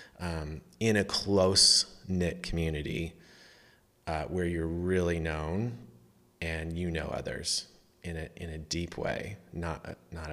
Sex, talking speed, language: male, 135 wpm, English